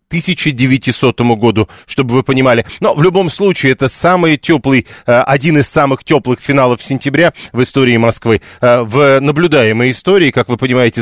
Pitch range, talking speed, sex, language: 120-145 Hz, 145 wpm, male, Russian